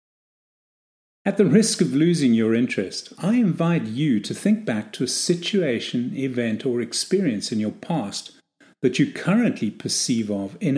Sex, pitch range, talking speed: male, 110-170 Hz, 155 wpm